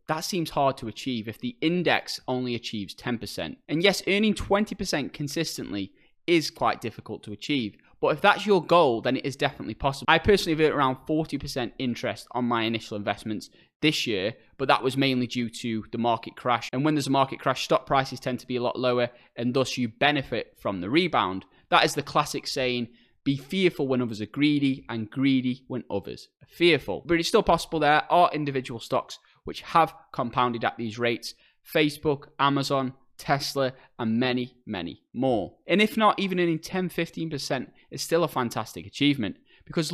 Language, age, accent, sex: English, 20-39, British, male